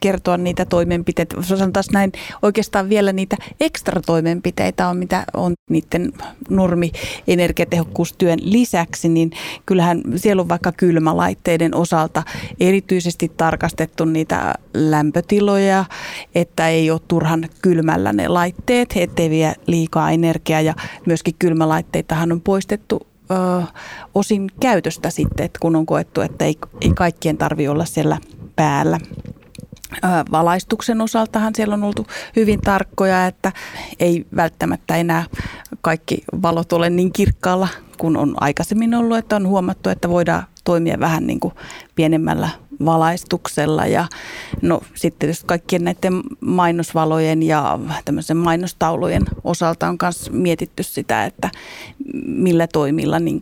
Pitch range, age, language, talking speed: 160-190 Hz, 30-49, Finnish, 120 wpm